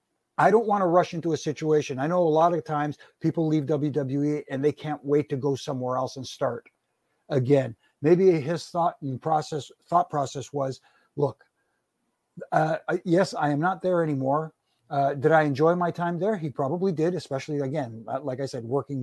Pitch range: 140-180 Hz